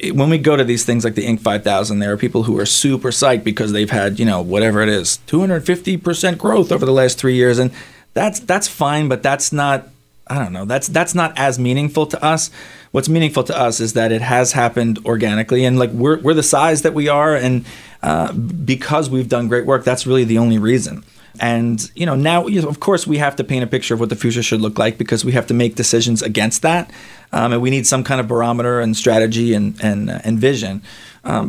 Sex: male